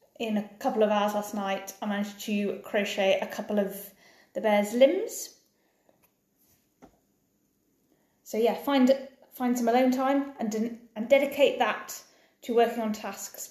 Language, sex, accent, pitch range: English, female, British, 205-280 Hz